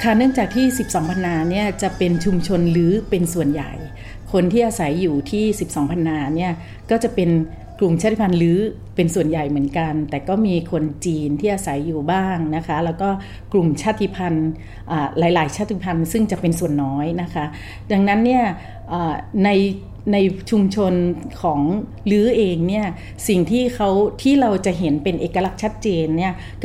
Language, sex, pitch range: Thai, female, 160-200 Hz